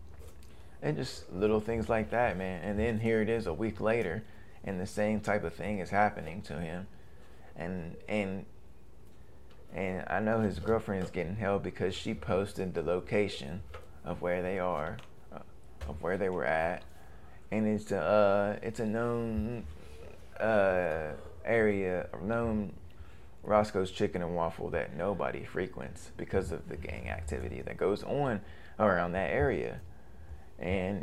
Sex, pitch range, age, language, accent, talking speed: male, 85-105 Hz, 20-39, English, American, 155 wpm